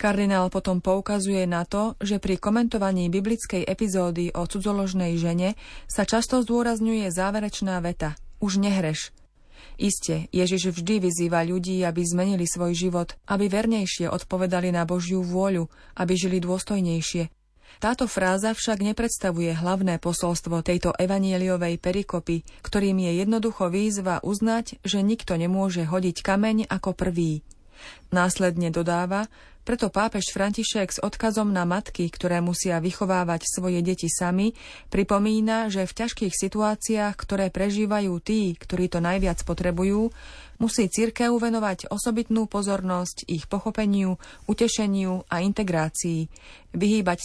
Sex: female